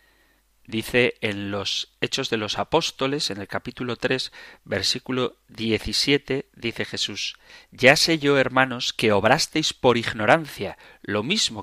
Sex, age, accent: male, 30-49, Spanish